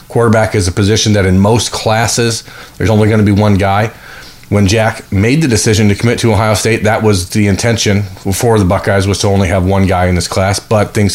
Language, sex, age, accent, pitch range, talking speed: English, male, 30-49, American, 95-110 Hz, 230 wpm